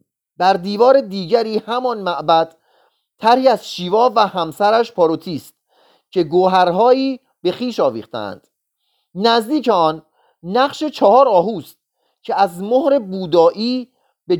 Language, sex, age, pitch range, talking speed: Persian, male, 30-49, 165-235 Hz, 115 wpm